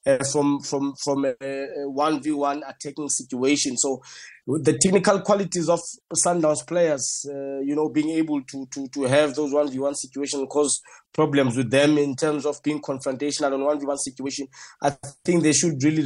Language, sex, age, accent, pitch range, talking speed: English, male, 20-39, South African, 145-170 Hz, 195 wpm